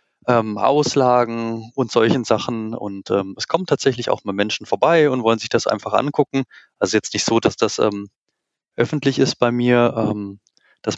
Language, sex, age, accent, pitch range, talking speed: German, male, 20-39, German, 110-130 Hz, 180 wpm